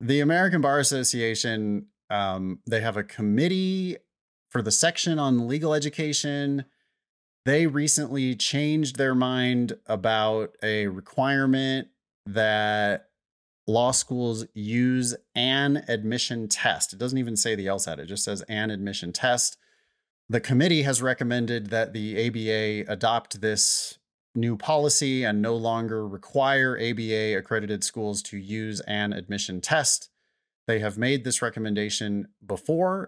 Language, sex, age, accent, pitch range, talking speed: English, male, 30-49, American, 110-135 Hz, 130 wpm